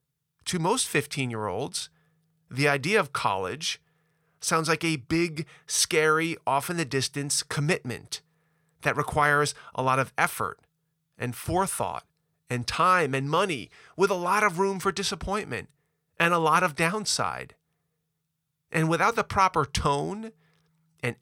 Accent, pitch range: American, 140-160 Hz